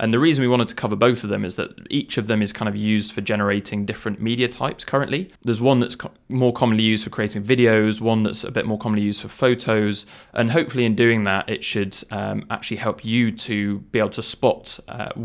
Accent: British